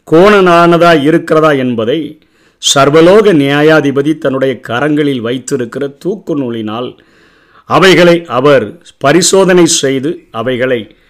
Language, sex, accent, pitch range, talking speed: Tamil, male, native, 125-160 Hz, 80 wpm